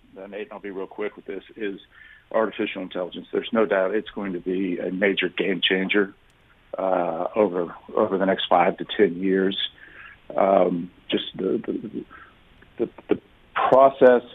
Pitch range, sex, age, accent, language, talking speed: 95-115 Hz, male, 50-69, American, English, 160 wpm